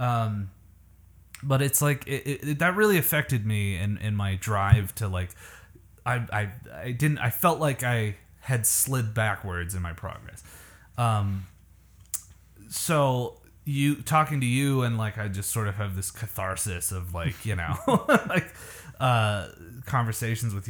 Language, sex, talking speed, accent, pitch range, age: English, male, 160 wpm, American, 95-125 Hz, 20-39